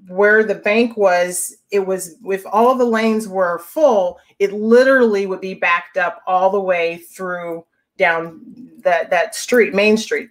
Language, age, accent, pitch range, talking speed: English, 40-59, American, 180-220 Hz, 165 wpm